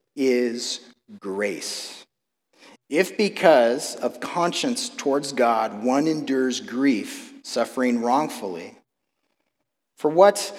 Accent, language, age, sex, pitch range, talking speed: American, English, 40-59, male, 130-200 Hz, 85 wpm